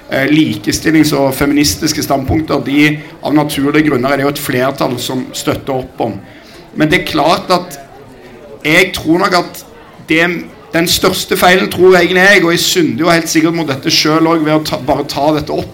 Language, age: English, 50-69